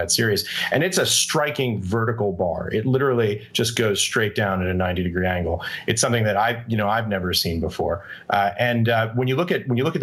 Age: 30-49